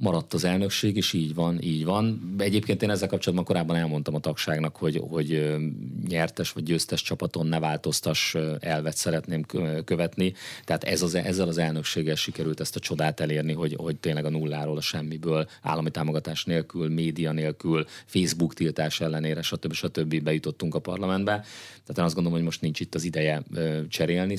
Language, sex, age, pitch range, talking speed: Hungarian, male, 30-49, 75-90 Hz, 170 wpm